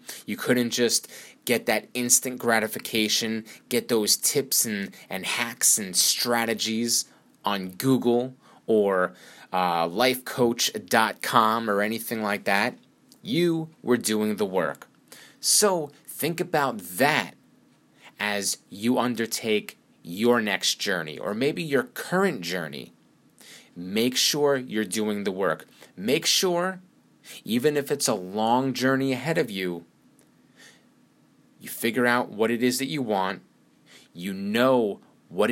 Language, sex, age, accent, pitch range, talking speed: English, male, 30-49, American, 110-135 Hz, 125 wpm